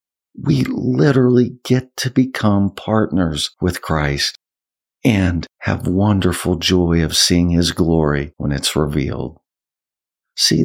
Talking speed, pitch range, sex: 115 wpm, 80-110 Hz, male